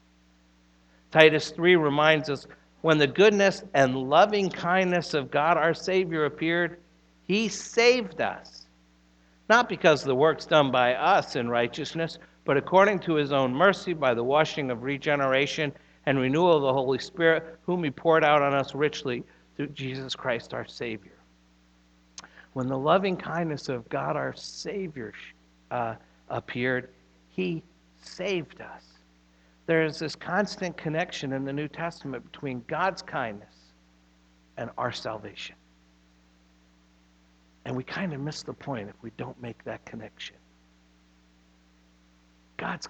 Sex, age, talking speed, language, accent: male, 60-79, 135 wpm, English, American